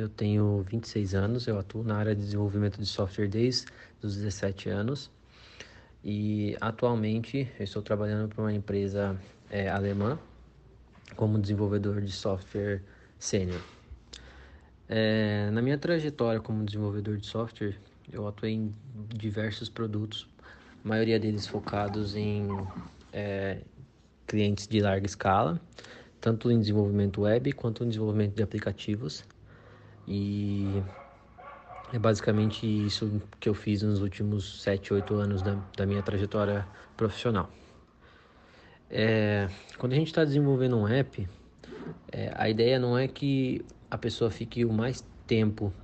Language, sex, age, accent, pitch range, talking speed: Portuguese, male, 20-39, Brazilian, 100-115 Hz, 130 wpm